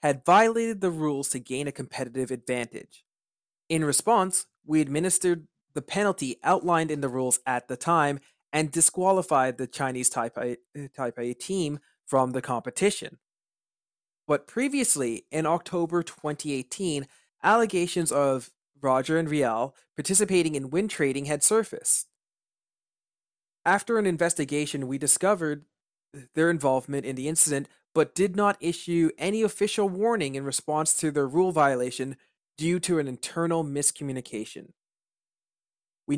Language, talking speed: English, 130 wpm